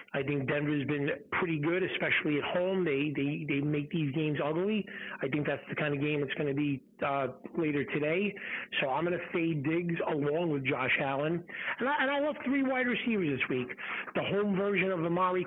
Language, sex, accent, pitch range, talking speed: English, male, American, 150-185 Hz, 215 wpm